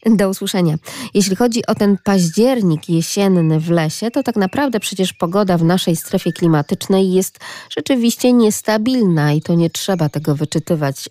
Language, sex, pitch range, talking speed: Polish, female, 155-210 Hz, 150 wpm